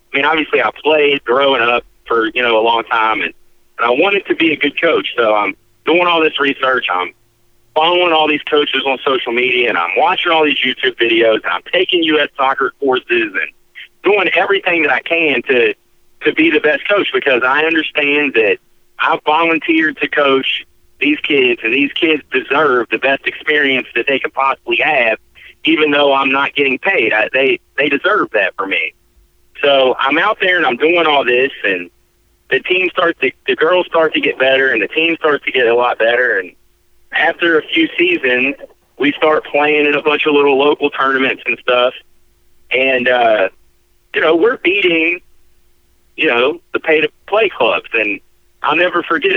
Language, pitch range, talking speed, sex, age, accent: English, 135-190 Hz, 190 wpm, male, 40-59, American